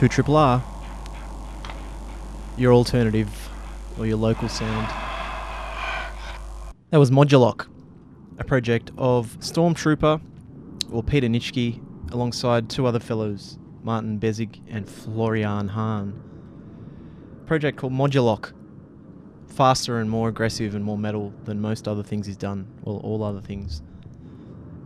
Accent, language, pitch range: Australian, English, 110-130 Hz